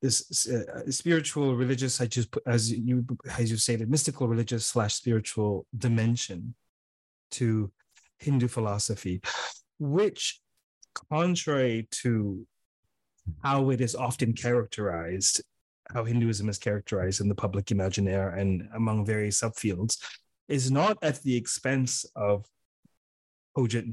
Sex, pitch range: male, 105-130 Hz